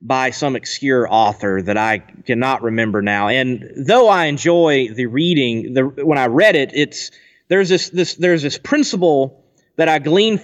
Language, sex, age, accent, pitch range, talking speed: English, male, 30-49, American, 140-195 Hz, 170 wpm